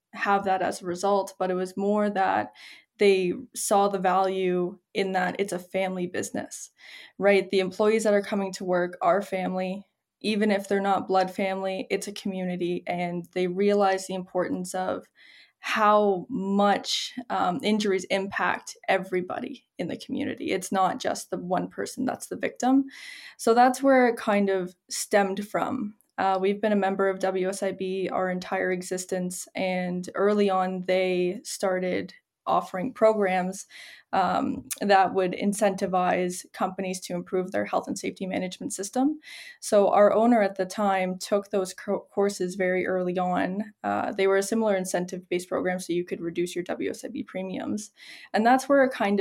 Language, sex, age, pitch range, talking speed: English, female, 10-29, 185-210 Hz, 160 wpm